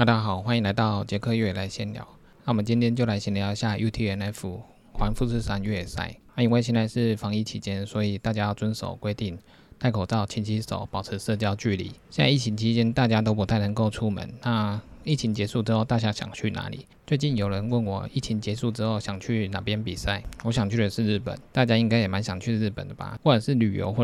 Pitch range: 100-115 Hz